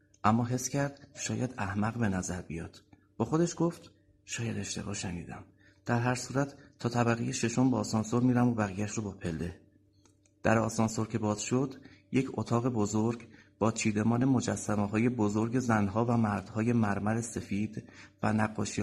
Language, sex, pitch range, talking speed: English, male, 95-115 Hz, 155 wpm